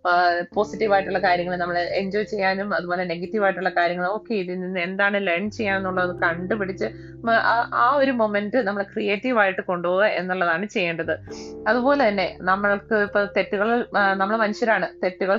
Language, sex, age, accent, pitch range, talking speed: Malayalam, female, 20-39, native, 180-210 Hz, 140 wpm